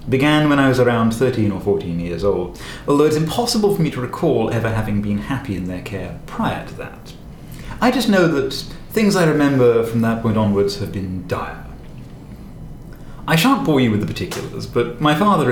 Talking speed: 195 wpm